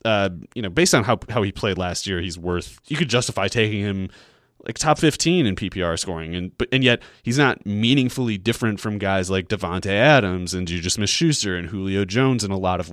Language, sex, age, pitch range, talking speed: English, male, 30-49, 95-130 Hz, 225 wpm